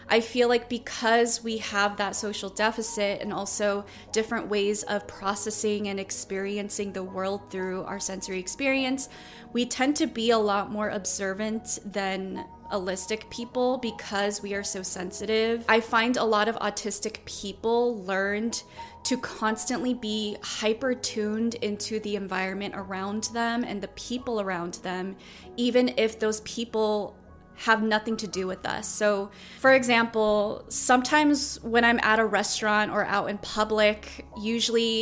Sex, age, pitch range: female, 20-39, 200-230 Hz